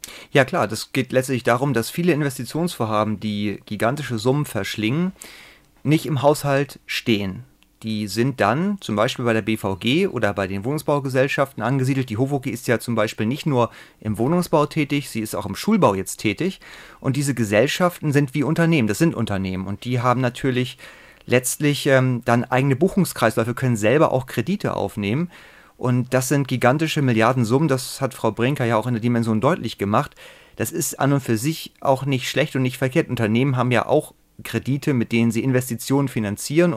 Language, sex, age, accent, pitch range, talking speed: German, male, 30-49, German, 115-145 Hz, 180 wpm